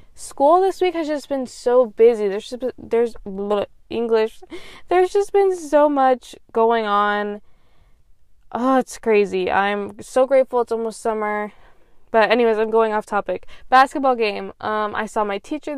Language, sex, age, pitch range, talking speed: English, female, 10-29, 210-260 Hz, 155 wpm